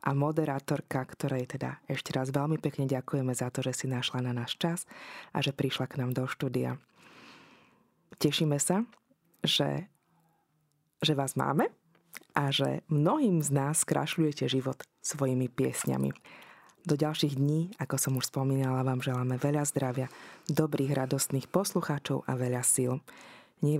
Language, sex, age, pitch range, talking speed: Slovak, female, 20-39, 135-160 Hz, 145 wpm